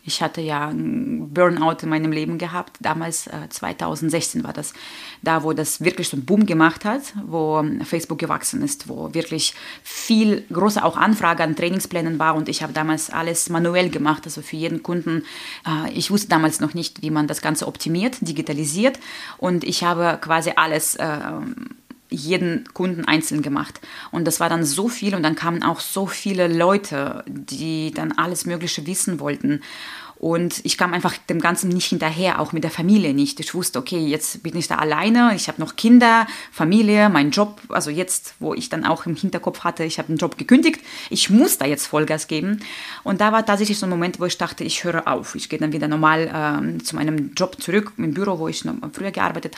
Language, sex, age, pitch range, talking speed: German, female, 20-39, 155-200 Hz, 195 wpm